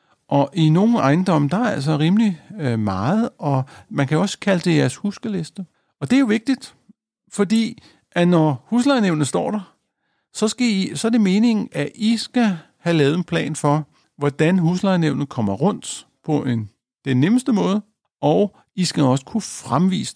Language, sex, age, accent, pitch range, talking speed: Danish, male, 50-69, native, 140-205 Hz, 175 wpm